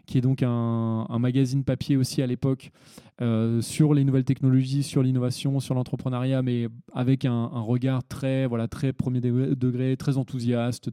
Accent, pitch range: French, 125-150 Hz